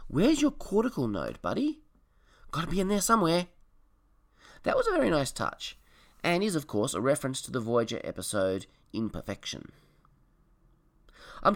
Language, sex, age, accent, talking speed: English, male, 20-39, Australian, 145 wpm